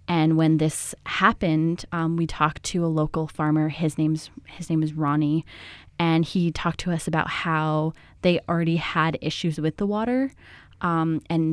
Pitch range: 150-165 Hz